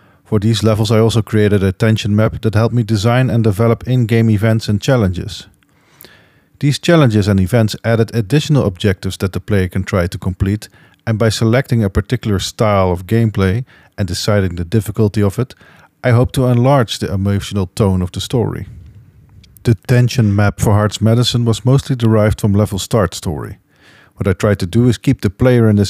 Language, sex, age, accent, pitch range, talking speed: English, male, 40-59, Dutch, 100-120 Hz, 190 wpm